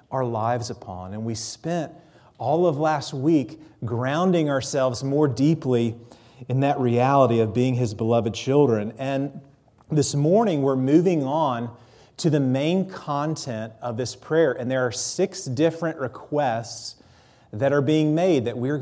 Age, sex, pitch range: 40-59, male, 120-155 Hz